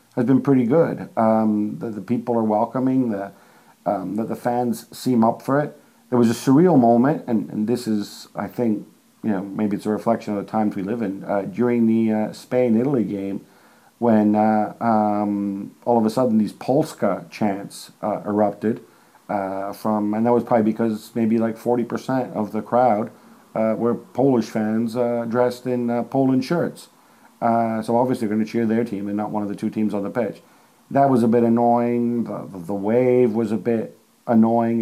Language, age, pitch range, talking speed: English, 50-69, 105-120 Hz, 195 wpm